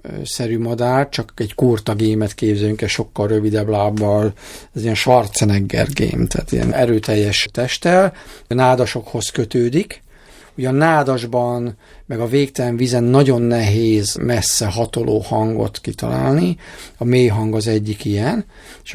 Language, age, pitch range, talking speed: Hungarian, 50-69, 105-130 Hz, 135 wpm